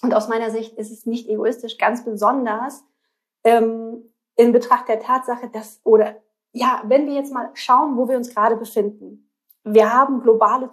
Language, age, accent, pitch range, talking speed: German, 30-49, German, 210-240 Hz, 175 wpm